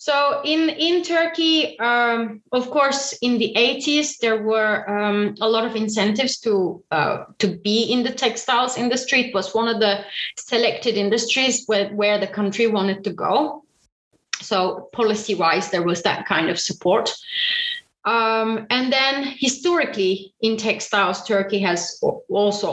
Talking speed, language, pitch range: 150 wpm, Finnish, 200-265 Hz